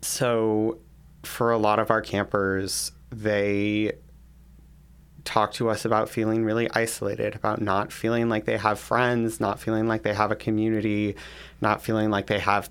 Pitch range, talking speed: 100-110 Hz, 160 wpm